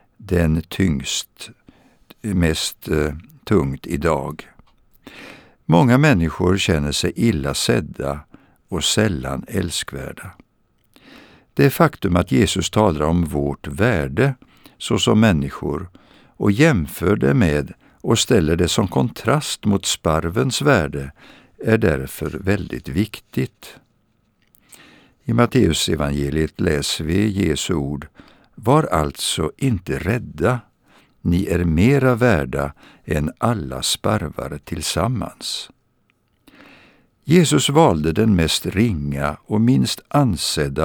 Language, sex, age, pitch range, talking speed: Swedish, male, 60-79, 75-110 Hz, 95 wpm